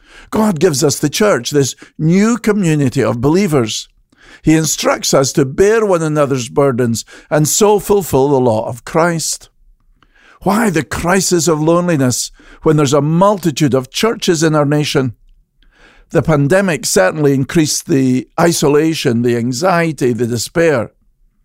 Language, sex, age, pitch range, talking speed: English, male, 50-69, 135-175 Hz, 135 wpm